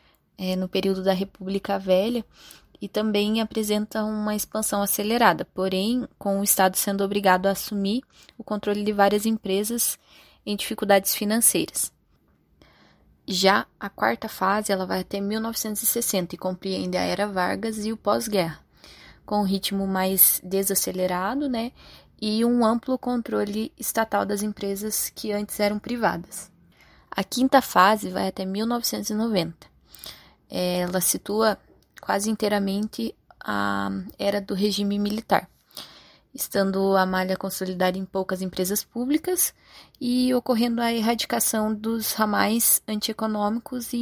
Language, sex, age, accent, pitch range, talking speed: Portuguese, female, 20-39, Brazilian, 190-225 Hz, 125 wpm